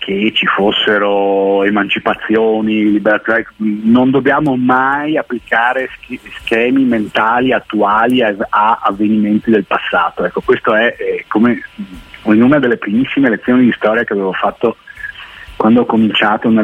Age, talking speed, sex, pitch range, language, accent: 40-59, 120 wpm, male, 105-150 Hz, Italian, native